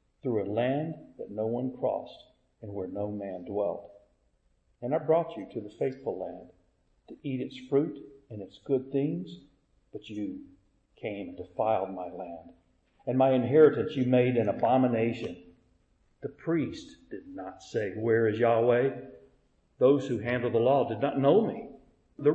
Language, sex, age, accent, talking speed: English, male, 50-69, American, 160 wpm